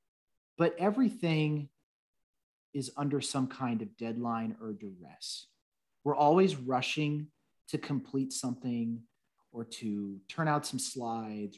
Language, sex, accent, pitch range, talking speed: English, male, American, 110-145 Hz, 115 wpm